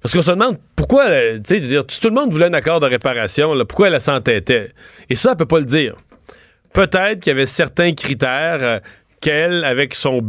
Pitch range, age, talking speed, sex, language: 135-165 Hz, 40-59, 220 wpm, male, French